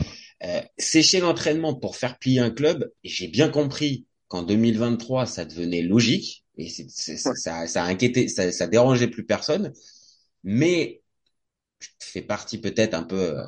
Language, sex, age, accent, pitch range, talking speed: French, male, 20-39, French, 95-135 Hz, 170 wpm